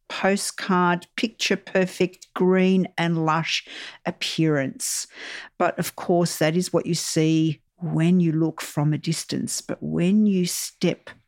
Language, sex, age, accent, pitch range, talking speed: English, female, 50-69, Australian, 155-220 Hz, 135 wpm